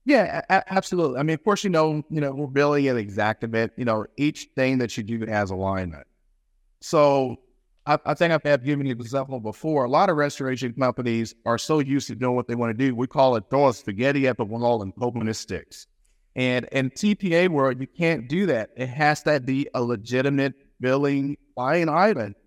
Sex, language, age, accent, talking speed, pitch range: male, English, 50-69, American, 215 wpm, 115-145 Hz